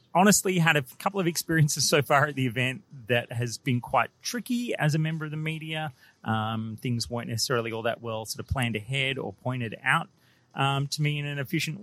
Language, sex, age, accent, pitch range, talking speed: English, male, 30-49, Australian, 115-145 Hz, 215 wpm